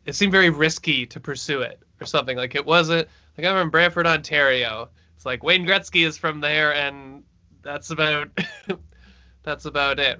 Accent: American